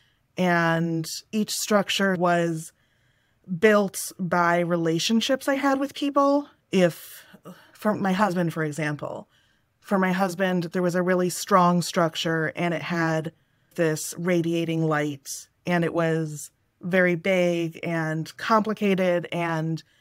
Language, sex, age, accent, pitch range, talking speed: English, female, 20-39, American, 160-185 Hz, 120 wpm